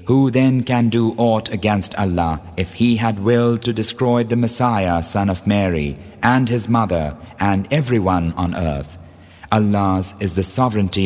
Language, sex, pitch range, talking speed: English, male, 85-115 Hz, 155 wpm